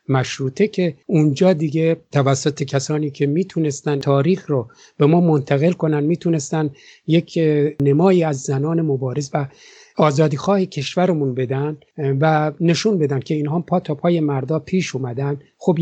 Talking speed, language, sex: 135 wpm, English, male